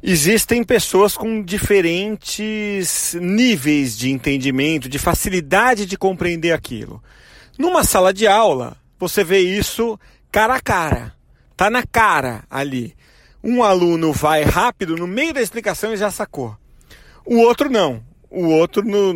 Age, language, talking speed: 40-59, Portuguese, 135 wpm